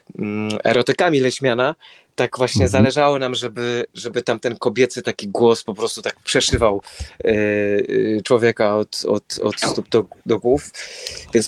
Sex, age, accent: male, 30-49, native